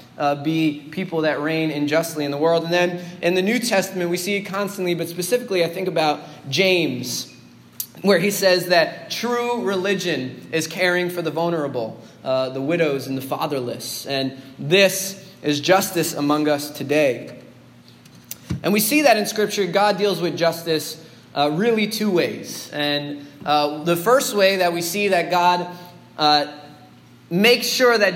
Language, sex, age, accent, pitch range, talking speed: English, male, 20-39, American, 150-195 Hz, 165 wpm